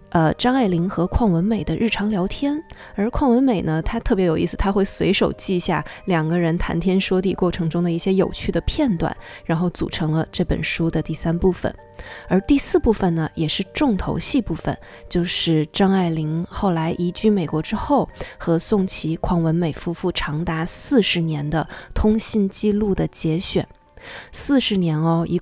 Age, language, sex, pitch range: 20-39, Chinese, female, 165-200 Hz